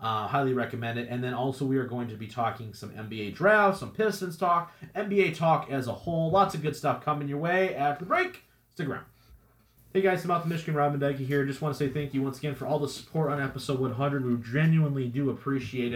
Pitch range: 115-155 Hz